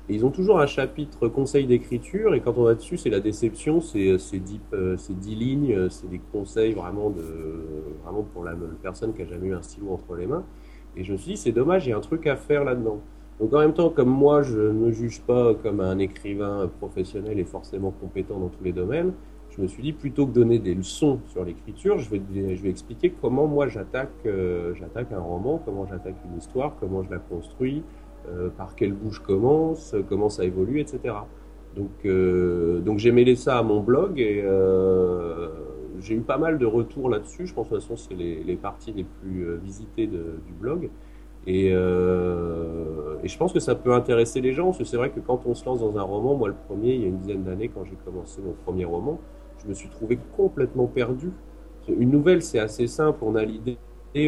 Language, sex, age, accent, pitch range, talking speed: French, male, 30-49, French, 90-125 Hz, 230 wpm